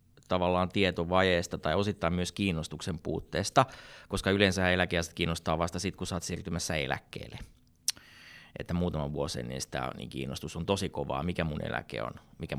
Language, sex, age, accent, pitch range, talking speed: Finnish, male, 30-49, native, 85-110 Hz, 145 wpm